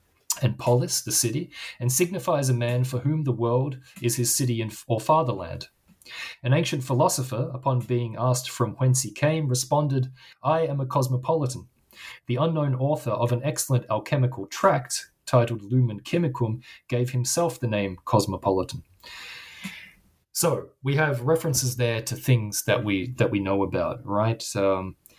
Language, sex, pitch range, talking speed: English, male, 105-130 Hz, 150 wpm